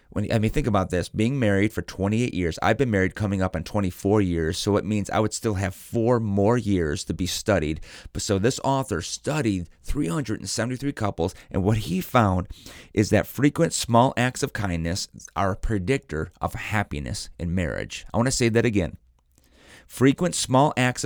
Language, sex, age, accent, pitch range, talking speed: English, male, 30-49, American, 90-115 Hz, 190 wpm